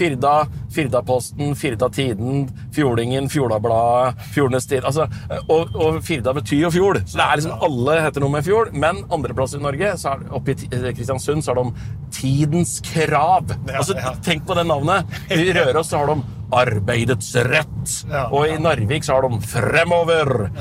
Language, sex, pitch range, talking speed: English, male, 120-150 Hz, 170 wpm